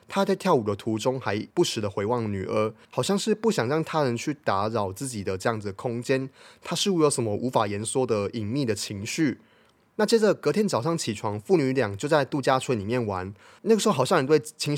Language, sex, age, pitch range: Chinese, male, 20-39, 110-150 Hz